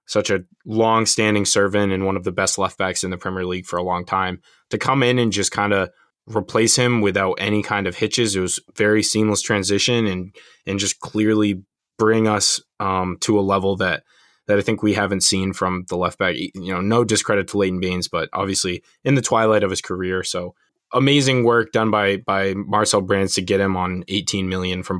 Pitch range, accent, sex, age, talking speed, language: 95-115 Hz, American, male, 20-39, 215 wpm, English